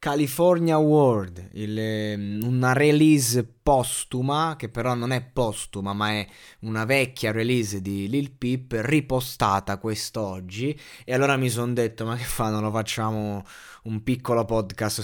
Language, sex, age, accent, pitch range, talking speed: Italian, male, 20-39, native, 110-140 Hz, 140 wpm